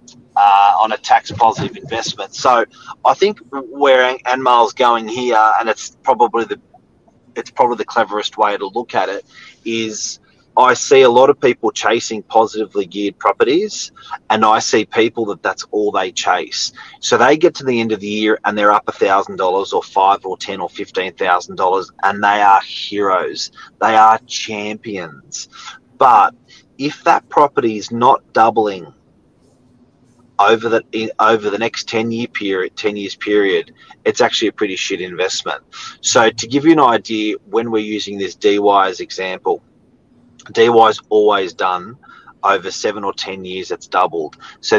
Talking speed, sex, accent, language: 165 wpm, male, Australian, English